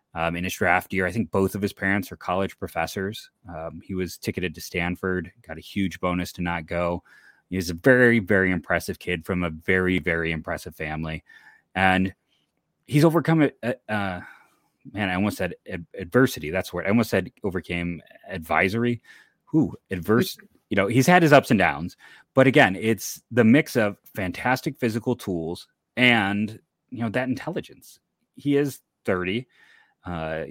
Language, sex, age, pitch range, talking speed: English, male, 30-49, 90-115 Hz, 165 wpm